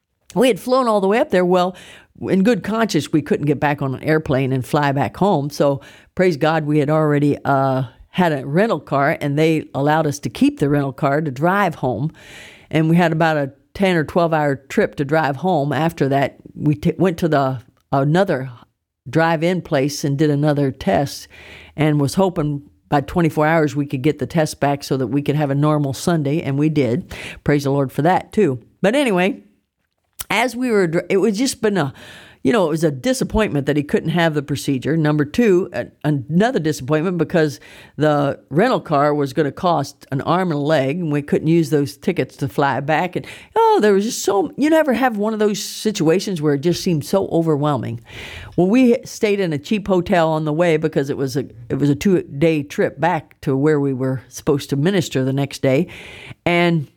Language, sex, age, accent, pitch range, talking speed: English, female, 50-69, American, 140-180 Hz, 210 wpm